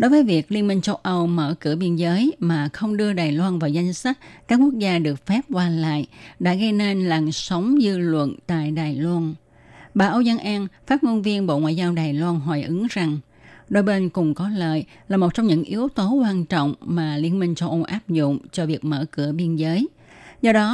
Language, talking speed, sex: Vietnamese, 230 wpm, female